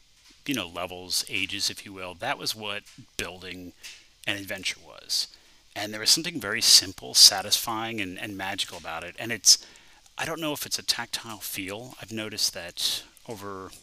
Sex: male